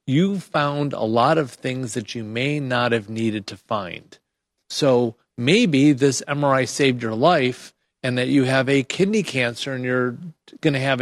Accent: American